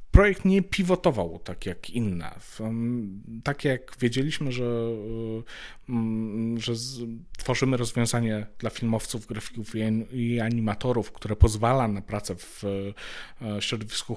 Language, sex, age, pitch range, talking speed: Polish, male, 40-59, 100-120 Hz, 100 wpm